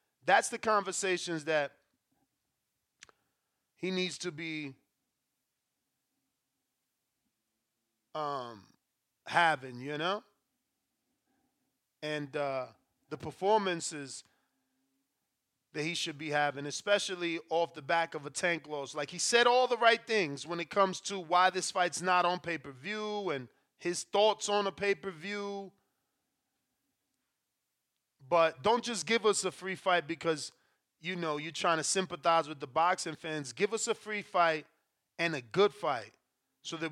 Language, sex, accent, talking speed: English, male, American, 135 wpm